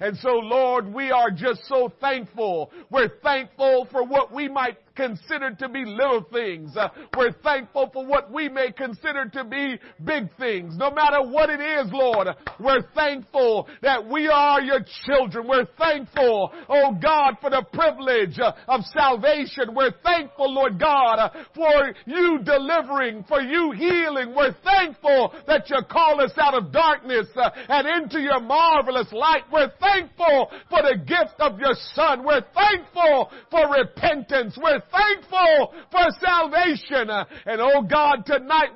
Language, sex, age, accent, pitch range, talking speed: English, male, 50-69, American, 265-320 Hz, 150 wpm